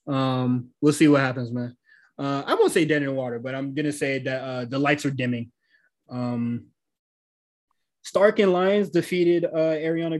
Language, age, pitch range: English, 20-39, 135-160 Hz